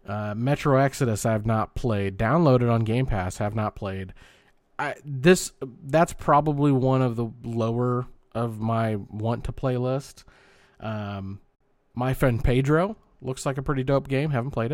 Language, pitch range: English, 110-140 Hz